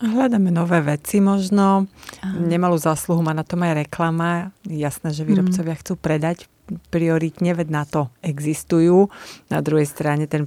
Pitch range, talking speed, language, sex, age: 150-185 Hz, 145 wpm, Slovak, female, 30-49